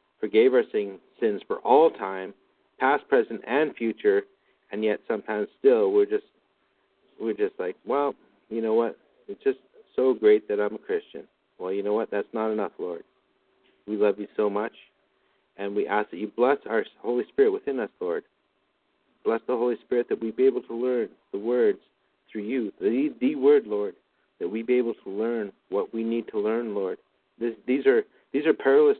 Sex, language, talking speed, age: male, English, 190 wpm, 50-69